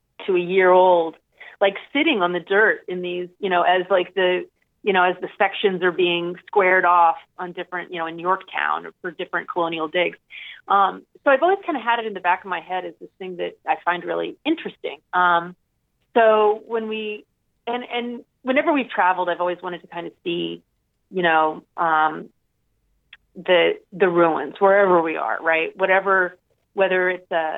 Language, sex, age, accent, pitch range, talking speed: English, female, 30-49, American, 175-205 Hz, 190 wpm